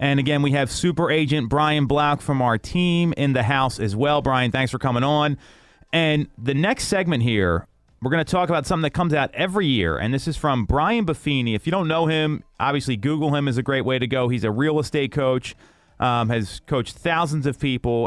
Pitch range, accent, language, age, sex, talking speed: 115-150 Hz, American, English, 30-49, male, 225 wpm